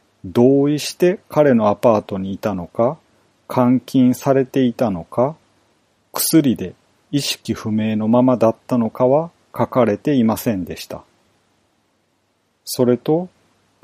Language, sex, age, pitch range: Japanese, male, 40-59, 105-135 Hz